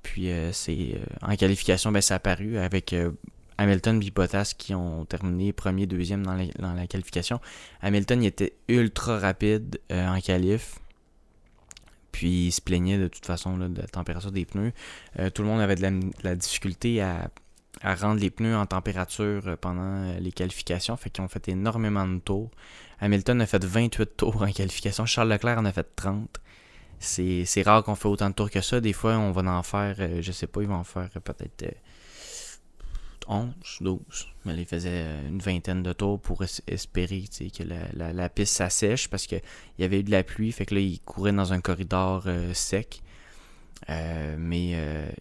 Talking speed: 195 wpm